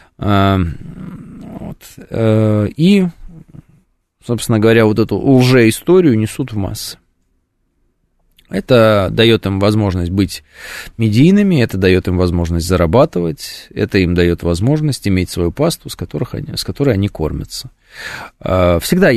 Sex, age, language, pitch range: male, 20-39, Russian, 90-120 Hz